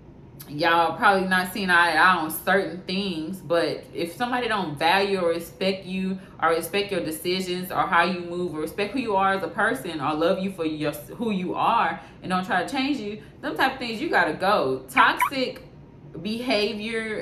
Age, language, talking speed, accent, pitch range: 20-39, English, 195 wpm, American, 165-210 Hz